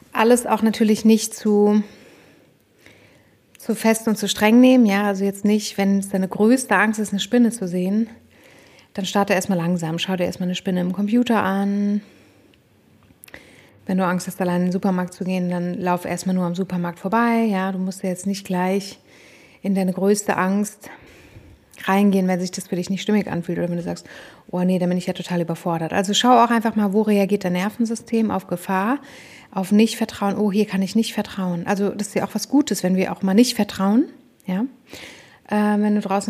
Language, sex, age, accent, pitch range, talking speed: German, female, 30-49, German, 185-220 Hz, 200 wpm